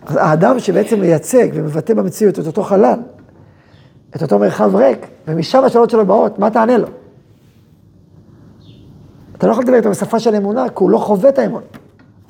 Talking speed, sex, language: 160 wpm, male, Hebrew